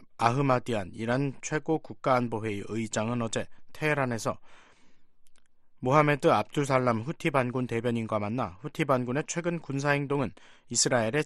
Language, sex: Korean, male